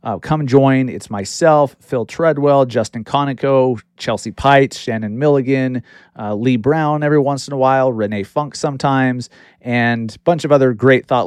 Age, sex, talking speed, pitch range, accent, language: 30-49, male, 165 wpm, 110-140 Hz, American, English